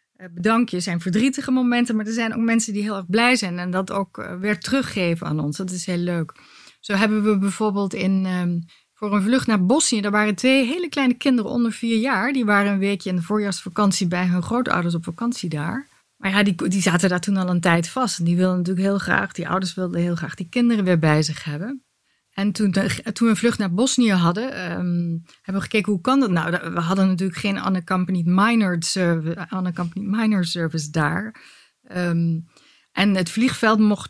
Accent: Dutch